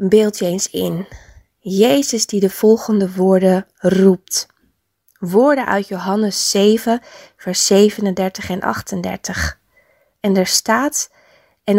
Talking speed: 110 wpm